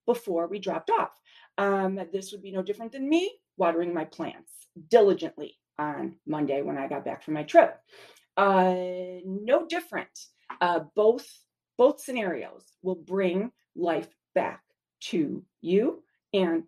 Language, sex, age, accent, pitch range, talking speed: English, female, 30-49, American, 180-235 Hz, 140 wpm